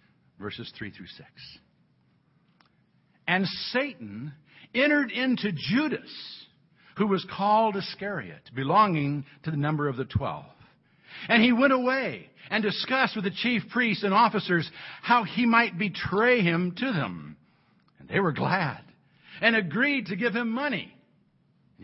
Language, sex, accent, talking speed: English, male, American, 135 wpm